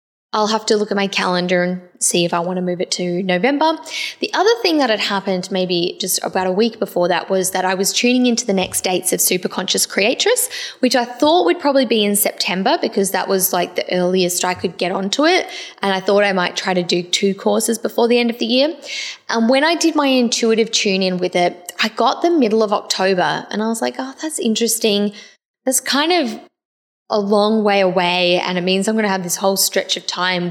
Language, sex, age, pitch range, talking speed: English, female, 10-29, 185-250 Hz, 235 wpm